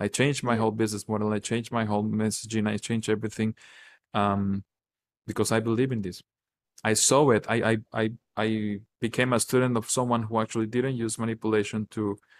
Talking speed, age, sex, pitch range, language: 185 wpm, 20-39, male, 105-120 Hz, English